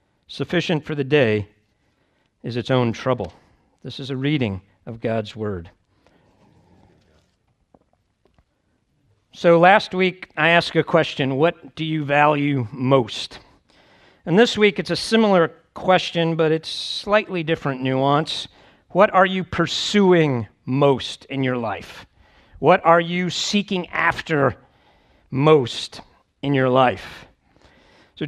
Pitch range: 145-195 Hz